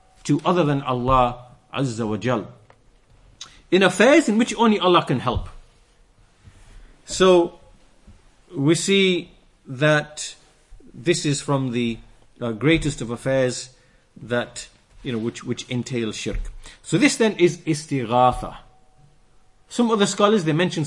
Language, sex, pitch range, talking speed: English, male, 125-175 Hz, 125 wpm